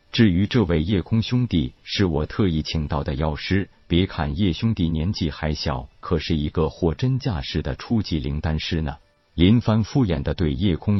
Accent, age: native, 50-69